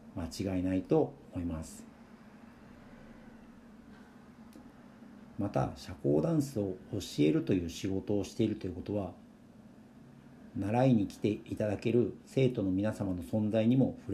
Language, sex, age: Japanese, male, 50-69